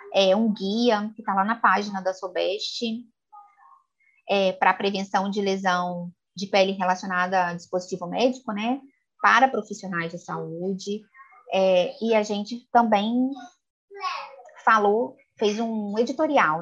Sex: female